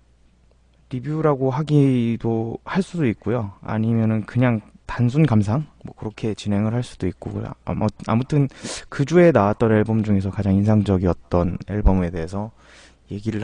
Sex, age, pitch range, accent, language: male, 20-39, 95-130 Hz, native, Korean